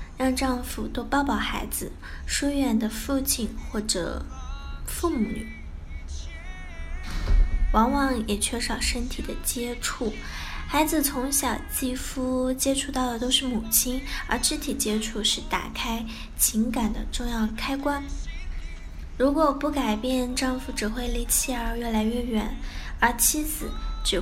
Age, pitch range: 10-29, 215-270 Hz